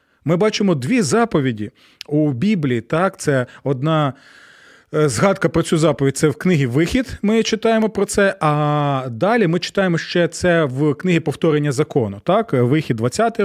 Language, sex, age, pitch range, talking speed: Ukrainian, male, 30-49, 140-180 Hz, 150 wpm